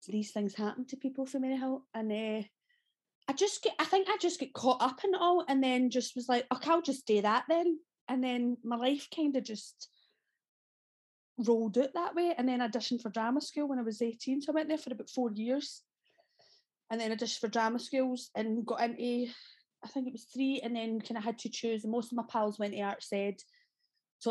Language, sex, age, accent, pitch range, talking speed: English, female, 30-49, British, 205-285 Hz, 230 wpm